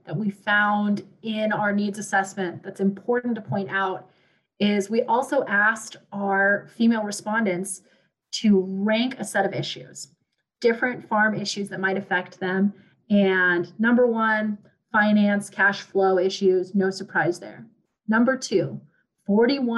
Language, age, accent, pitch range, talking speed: English, 30-49, American, 195-230 Hz, 135 wpm